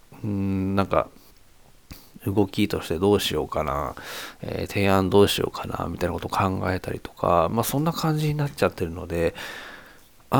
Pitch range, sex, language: 90-130 Hz, male, Japanese